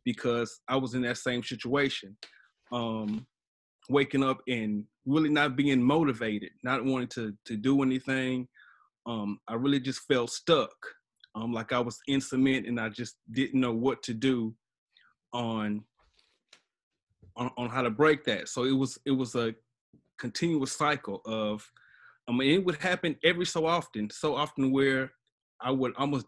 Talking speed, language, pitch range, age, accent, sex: 160 wpm, English, 115-140 Hz, 30-49, American, male